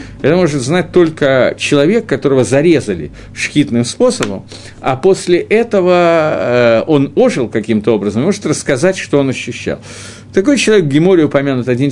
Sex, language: male, Russian